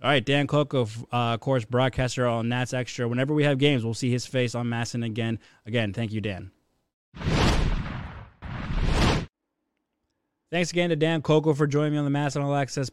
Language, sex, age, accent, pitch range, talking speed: English, male, 20-39, American, 125-160 Hz, 175 wpm